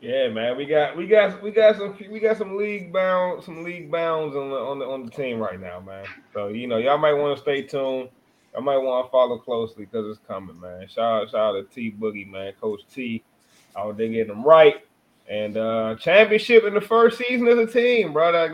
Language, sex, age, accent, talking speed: English, male, 20-39, American, 235 wpm